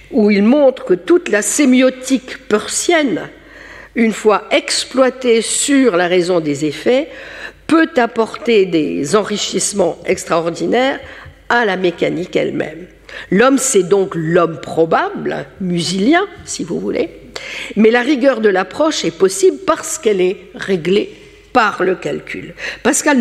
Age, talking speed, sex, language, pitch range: 60-79, 125 wpm, female, French, 175-260 Hz